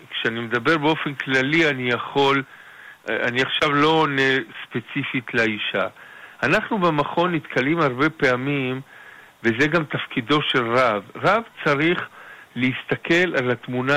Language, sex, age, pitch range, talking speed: Hebrew, male, 50-69, 125-175 Hz, 110 wpm